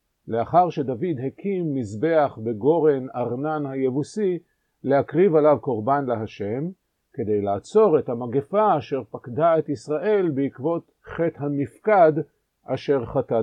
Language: Hebrew